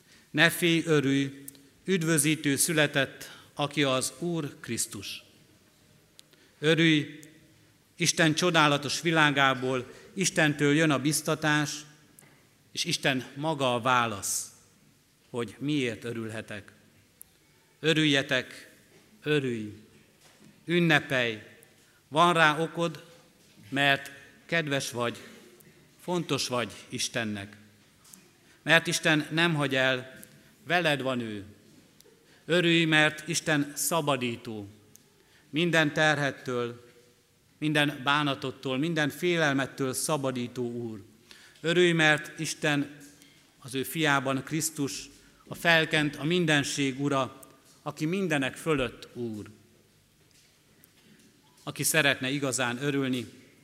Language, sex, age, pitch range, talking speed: Hungarian, male, 60-79, 125-155 Hz, 85 wpm